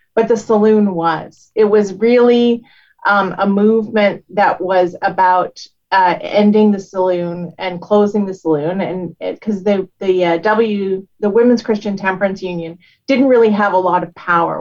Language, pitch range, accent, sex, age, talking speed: English, 175-205 Hz, American, female, 30-49, 160 wpm